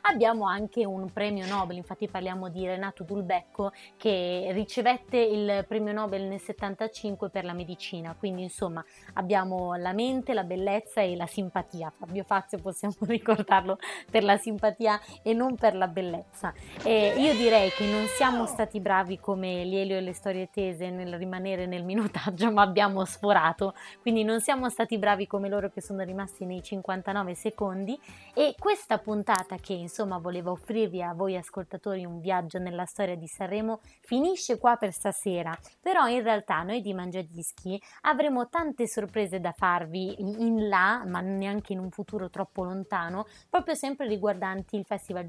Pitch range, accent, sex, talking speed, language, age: 185-220 Hz, native, female, 160 wpm, Italian, 20-39